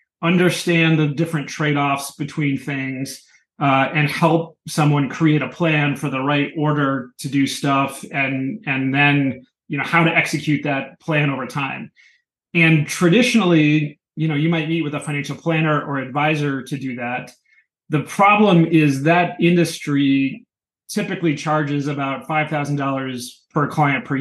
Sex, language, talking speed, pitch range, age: male, English, 155 wpm, 140-170 Hz, 30-49